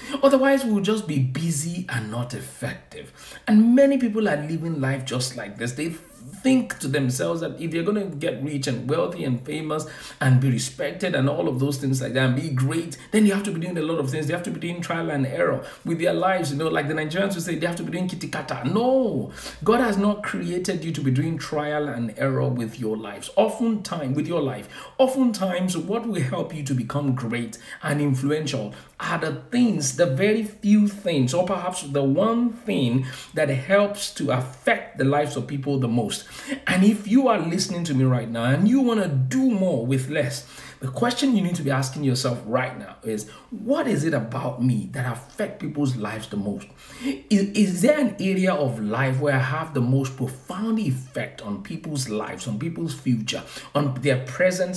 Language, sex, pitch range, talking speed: English, male, 130-190 Hz, 210 wpm